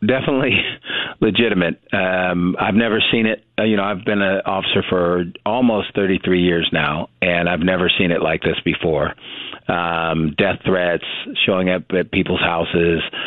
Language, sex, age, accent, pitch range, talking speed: English, male, 40-59, American, 85-95 Hz, 155 wpm